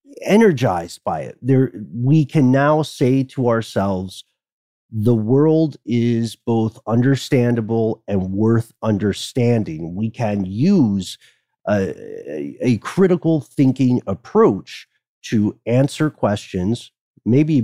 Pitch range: 105-135 Hz